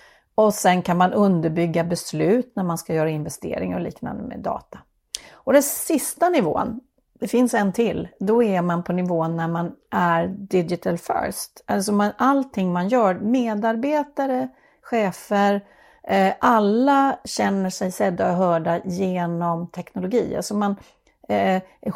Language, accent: Swedish, native